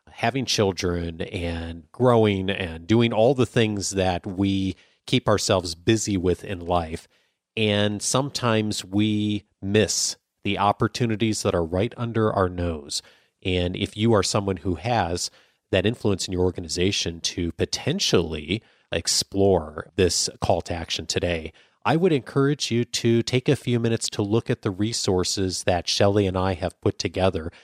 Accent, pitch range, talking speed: American, 90-115 Hz, 150 wpm